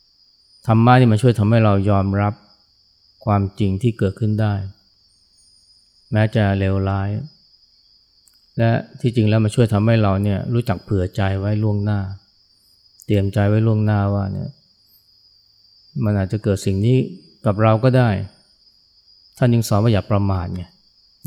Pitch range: 95-110 Hz